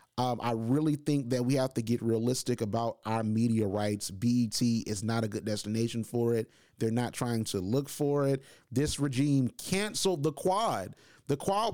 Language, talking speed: English, 185 wpm